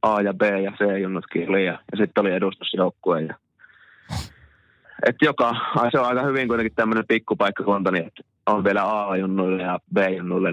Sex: male